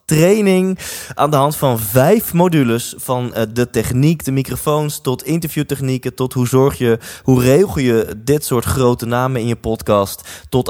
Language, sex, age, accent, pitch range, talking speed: Dutch, male, 20-39, Dutch, 105-145 Hz, 170 wpm